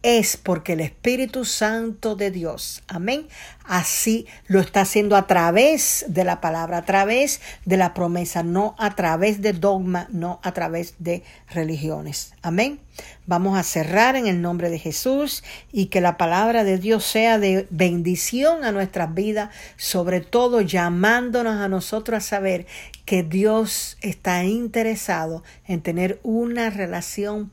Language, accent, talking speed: Spanish, American, 150 wpm